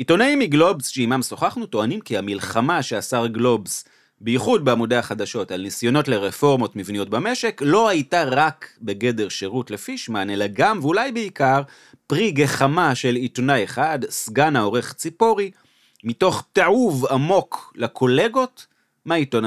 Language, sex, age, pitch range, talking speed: Hebrew, male, 30-49, 110-150 Hz, 125 wpm